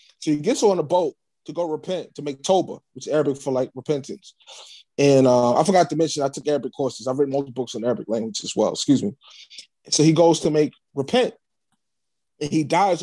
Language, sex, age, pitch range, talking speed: English, male, 20-39, 140-175 Hz, 220 wpm